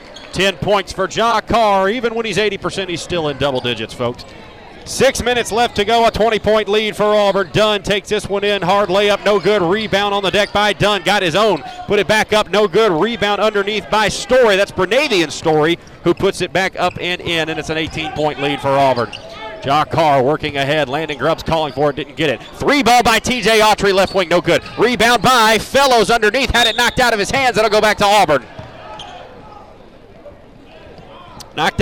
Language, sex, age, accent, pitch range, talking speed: English, male, 40-59, American, 155-210 Hz, 205 wpm